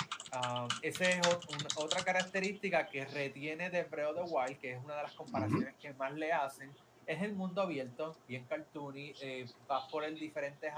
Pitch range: 135-170 Hz